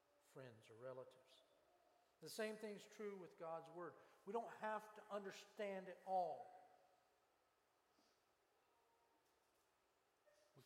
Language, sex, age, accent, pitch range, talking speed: English, male, 50-69, American, 135-185 Hz, 105 wpm